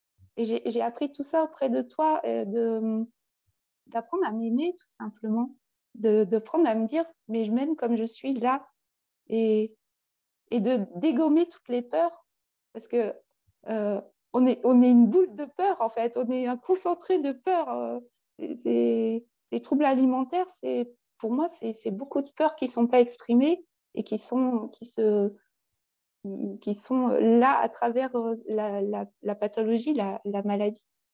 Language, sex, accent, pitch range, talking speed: French, female, French, 215-265 Hz, 175 wpm